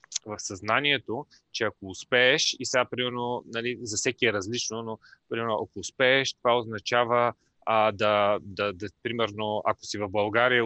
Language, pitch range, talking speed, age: Bulgarian, 100-120 Hz, 145 wpm, 20-39